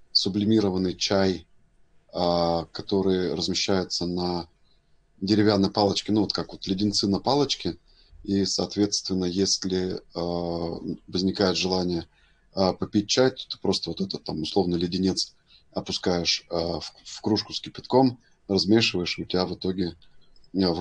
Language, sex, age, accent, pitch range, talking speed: Russian, male, 30-49, native, 85-100 Hz, 115 wpm